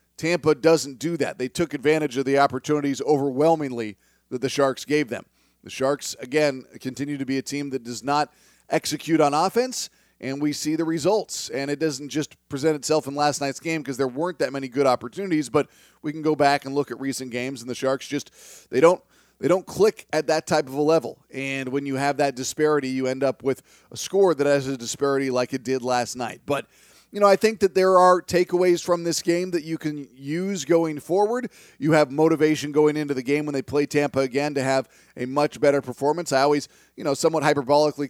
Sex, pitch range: male, 135-160 Hz